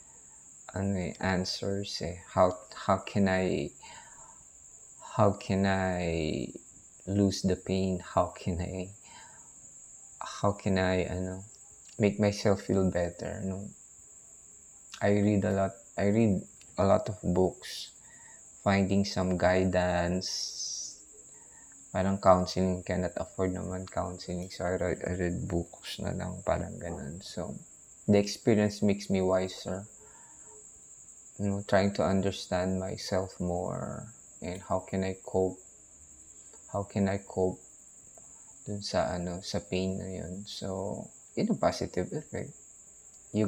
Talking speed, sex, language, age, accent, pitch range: 125 wpm, male, English, 20-39, Filipino, 90-105 Hz